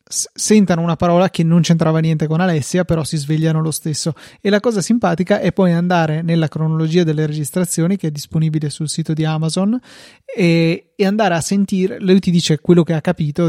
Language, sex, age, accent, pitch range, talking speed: Italian, male, 30-49, native, 155-185 Hz, 195 wpm